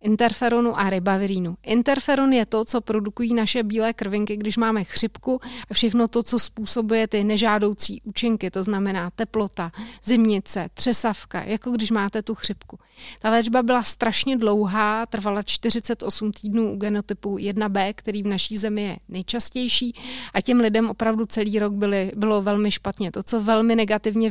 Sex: female